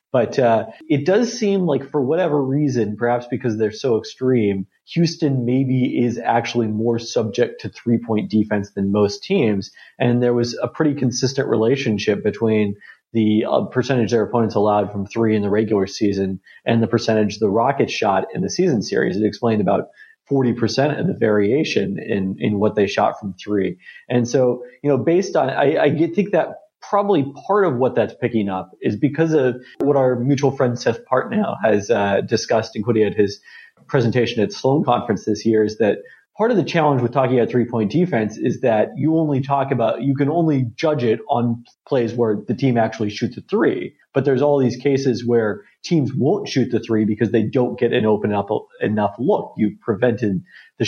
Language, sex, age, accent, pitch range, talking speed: English, male, 30-49, American, 110-140 Hz, 195 wpm